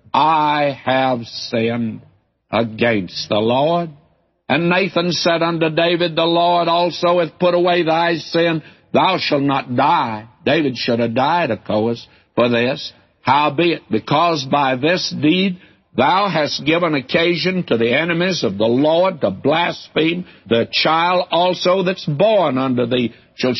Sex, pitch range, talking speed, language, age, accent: male, 120-155 Hz, 140 wpm, English, 60-79, American